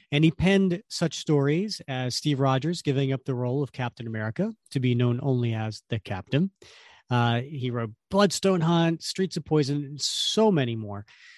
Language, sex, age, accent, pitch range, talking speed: English, male, 40-59, American, 130-170 Hz, 180 wpm